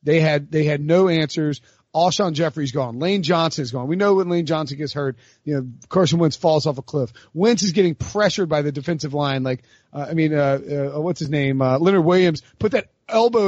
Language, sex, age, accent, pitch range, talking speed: English, male, 30-49, American, 150-195 Hz, 225 wpm